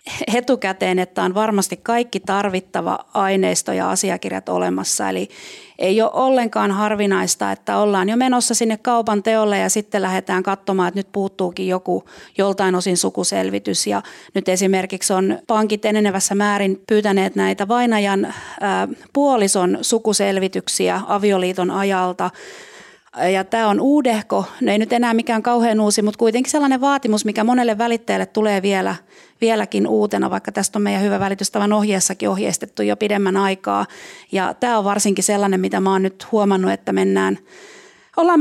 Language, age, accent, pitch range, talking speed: Finnish, 30-49, native, 190-230 Hz, 140 wpm